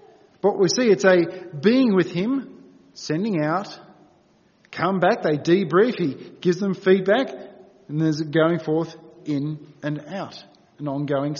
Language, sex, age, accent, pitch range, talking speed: English, male, 40-59, Australian, 160-225 Hz, 145 wpm